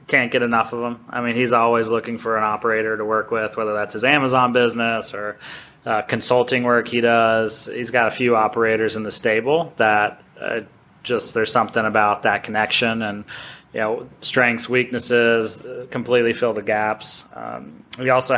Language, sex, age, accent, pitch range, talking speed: English, male, 20-39, American, 110-125 Hz, 185 wpm